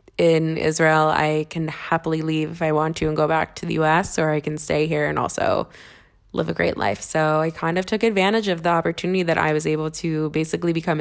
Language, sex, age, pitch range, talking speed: English, female, 20-39, 155-180 Hz, 235 wpm